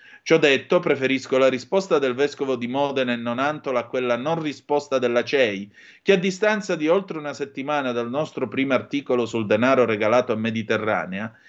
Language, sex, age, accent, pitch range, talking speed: Italian, male, 30-49, native, 120-165 Hz, 170 wpm